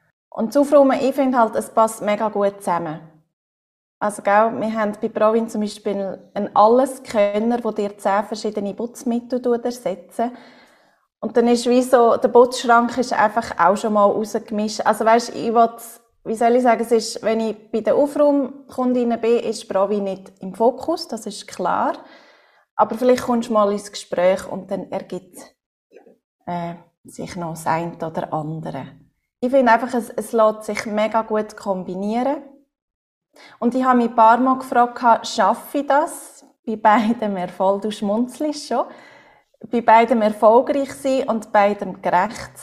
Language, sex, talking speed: German, female, 165 wpm